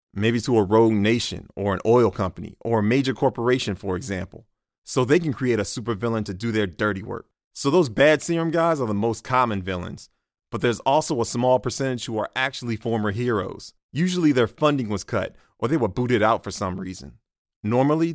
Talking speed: 200 wpm